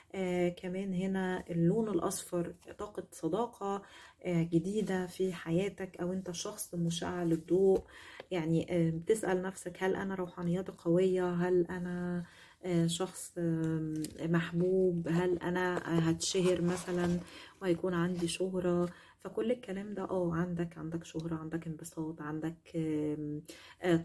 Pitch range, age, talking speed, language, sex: 170-185 Hz, 20-39, 120 wpm, Arabic, female